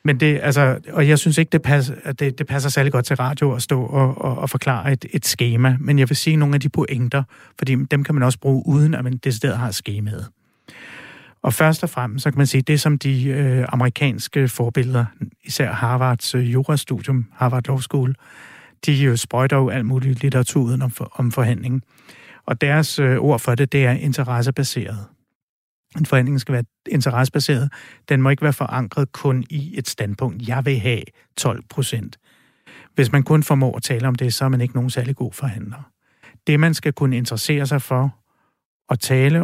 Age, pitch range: 60-79, 125-145 Hz